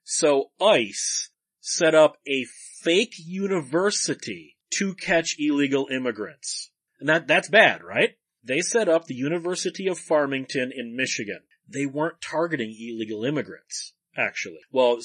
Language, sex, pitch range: English, male, 130-175 Hz